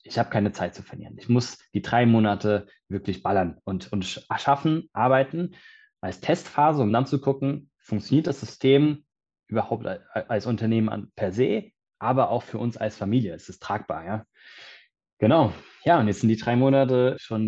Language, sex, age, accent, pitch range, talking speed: German, male, 20-39, German, 105-125 Hz, 170 wpm